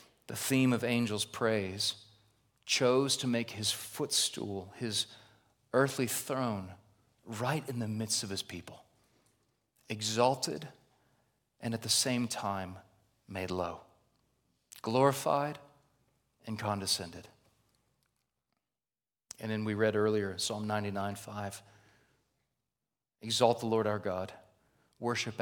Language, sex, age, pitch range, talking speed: English, male, 40-59, 105-130 Hz, 105 wpm